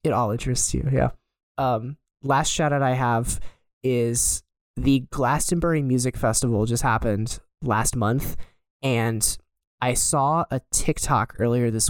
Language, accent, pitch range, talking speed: English, American, 120-140 Hz, 130 wpm